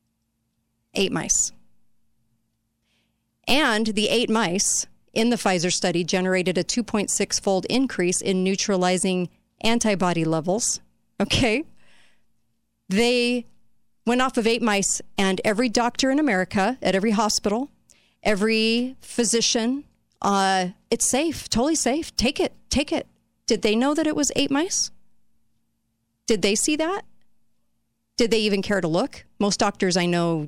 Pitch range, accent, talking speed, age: 180-230 Hz, American, 130 wpm, 40-59